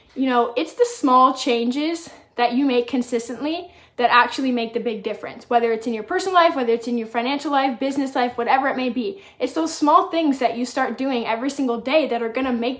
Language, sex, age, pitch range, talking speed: English, female, 20-39, 230-265 Hz, 235 wpm